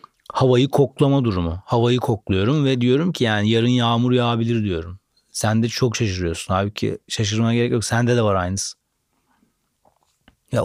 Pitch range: 110-135 Hz